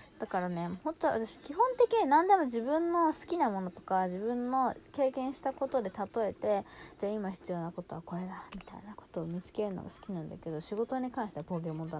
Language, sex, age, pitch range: Japanese, female, 20-39, 185-250 Hz